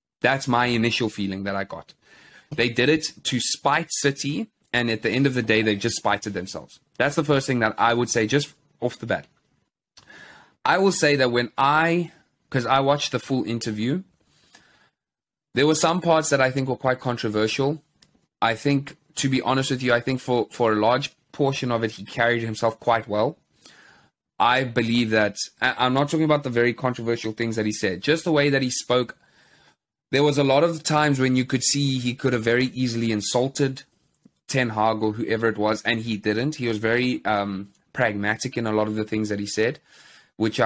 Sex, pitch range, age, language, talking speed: male, 110-135 Hz, 20-39, English, 205 wpm